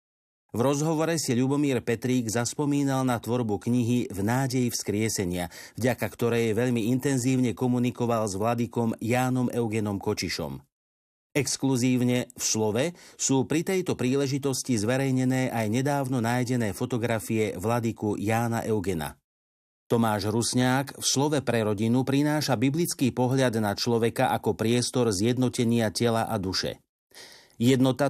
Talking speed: 115 wpm